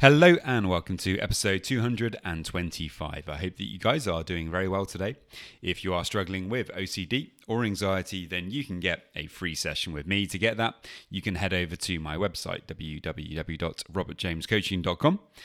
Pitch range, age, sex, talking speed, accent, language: 85-115 Hz, 30-49, male, 170 wpm, British, English